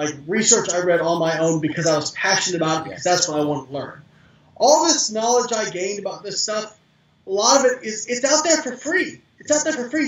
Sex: male